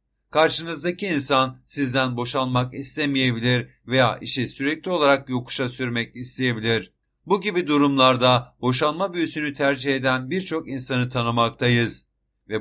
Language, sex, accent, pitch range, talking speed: Turkish, male, native, 120-140 Hz, 110 wpm